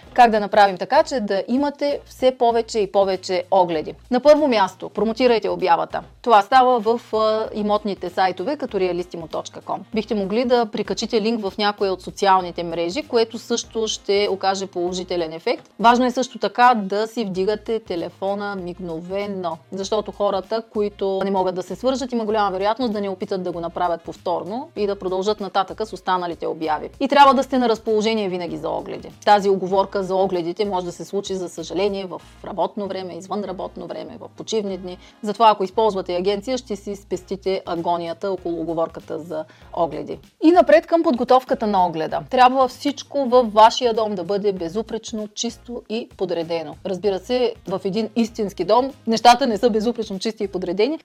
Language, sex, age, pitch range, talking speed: Bulgarian, female, 30-49, 185-225 Hz, 170 wpm